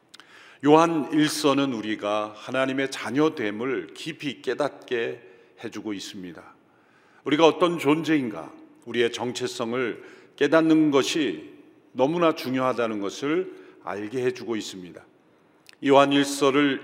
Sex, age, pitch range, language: male, 40-59, 120-160 Hz, Korean